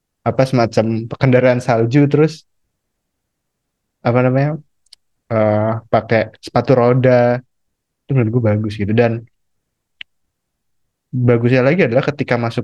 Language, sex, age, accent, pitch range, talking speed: Indonesian, male, 20-39, native, 110-135 Hz, 100 wpm